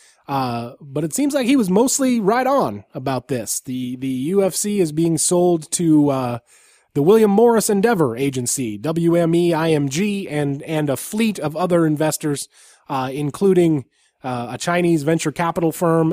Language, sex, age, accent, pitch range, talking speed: English, male, 30-49, American, 135-180 Hz, 155 wpm